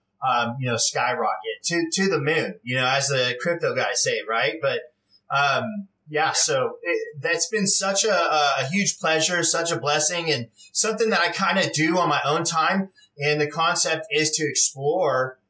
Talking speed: 185 wpm